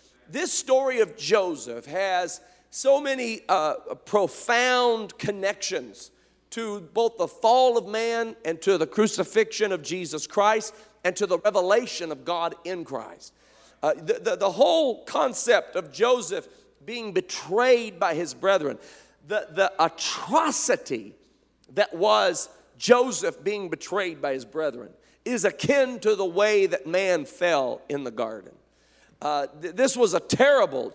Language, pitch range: English, 185-260 Hz